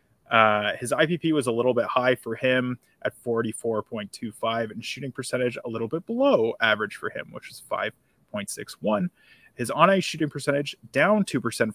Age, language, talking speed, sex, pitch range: 20-39, English, 160 wpm, male, 115-145 Hz